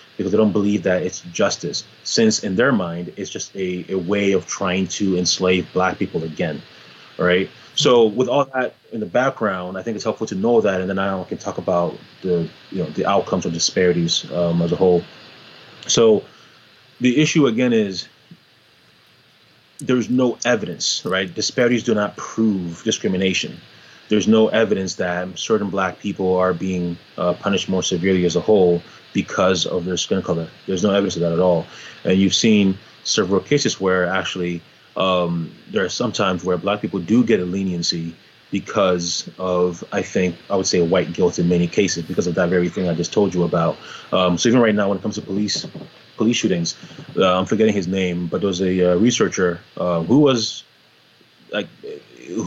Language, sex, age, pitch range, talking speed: English, male, 30-49, 90-110 Hz, 190 wpm